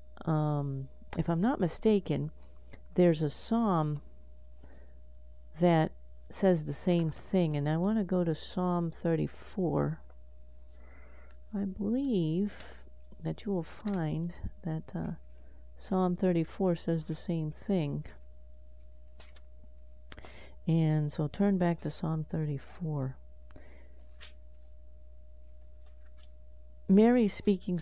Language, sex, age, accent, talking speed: English, female, 40-59, American, 95 wpm